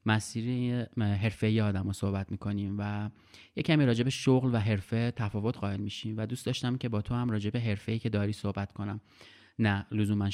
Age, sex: 30-49, male